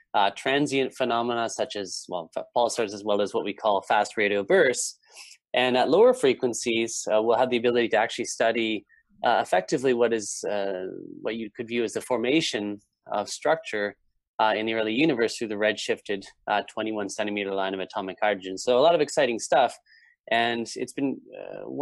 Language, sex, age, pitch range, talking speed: English, male, 20-39, 105-130 Hz, 185 wpm